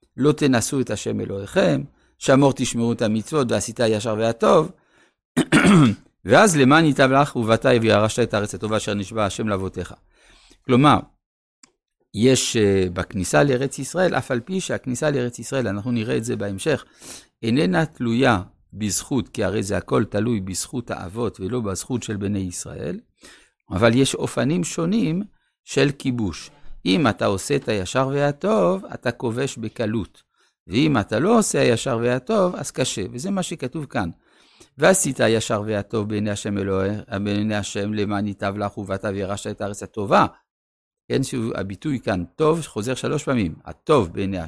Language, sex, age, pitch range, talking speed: Hebrew, male, 60-79, 105-135 Hz, 145 wpm